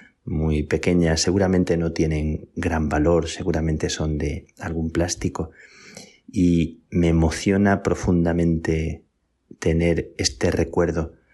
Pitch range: 80-85 Hz